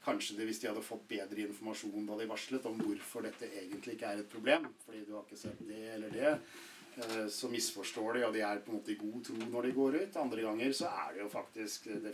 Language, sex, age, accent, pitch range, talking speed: English, male, 40-59, Norwegian, 105-130 Hz, 250 wpm